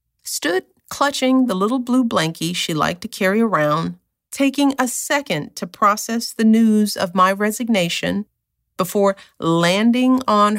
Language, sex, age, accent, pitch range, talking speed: English, female, 50-69, American, 200-270 Hz, 135 wpm